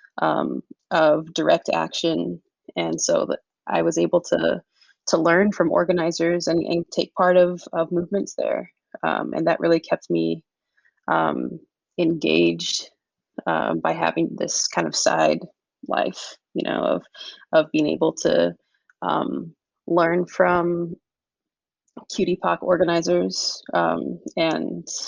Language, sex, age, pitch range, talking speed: English, female, 20-39, 165-195 Hz, 125 wpm